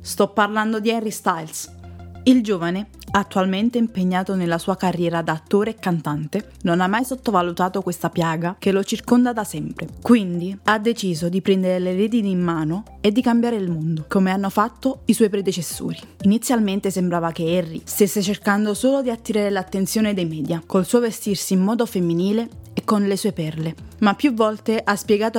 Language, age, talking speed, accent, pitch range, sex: Italian, 20-39, 175 wpm, native, 180-225 Hz, female